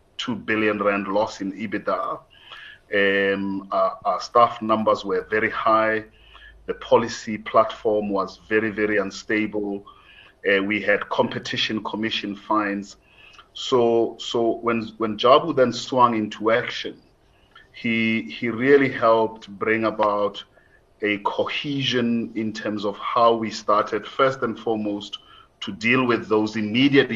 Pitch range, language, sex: 105-115 Hz, English, male